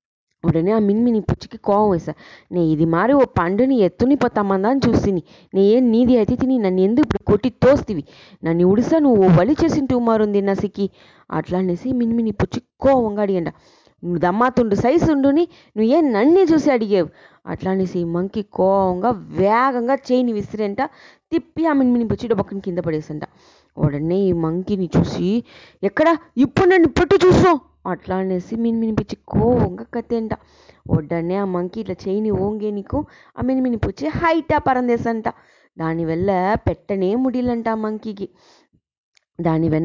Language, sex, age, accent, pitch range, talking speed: English, female, 20-39, Indian, 185-240 Hz, 40 wpm